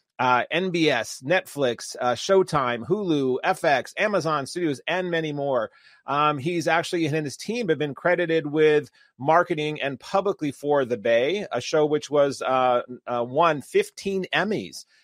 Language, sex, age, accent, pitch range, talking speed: English, male, 30-49, American, 130-160 Hz, 150 wpm